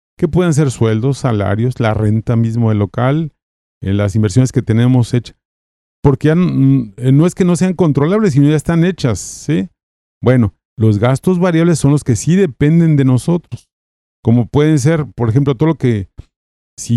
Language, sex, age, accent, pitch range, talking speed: Spanish, male, 40-59, Mexican, 105-140 Hz, 175 wpm